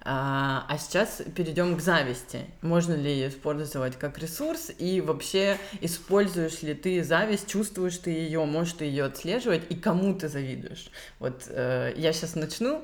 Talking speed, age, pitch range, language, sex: 150 wpm, 20-39, 155-195 Hz, Russian, female